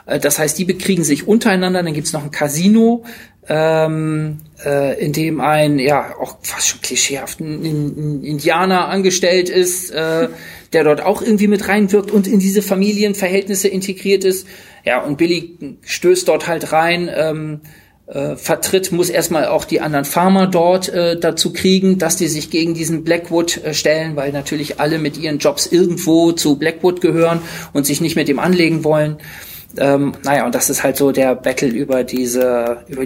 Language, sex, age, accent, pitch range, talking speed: German, male, 40-59, German, 145-185 Hz, 175 wpm